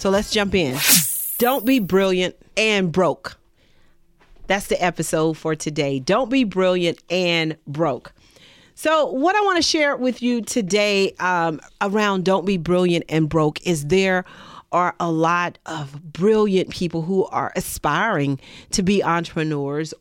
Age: 40-59